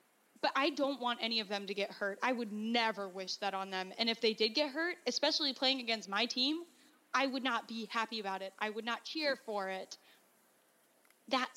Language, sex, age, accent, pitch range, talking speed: English, female, 10-29, American, 210-260 Hz, 220 wpm